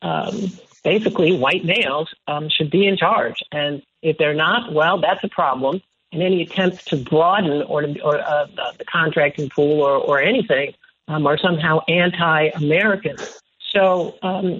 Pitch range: 155-195 Hz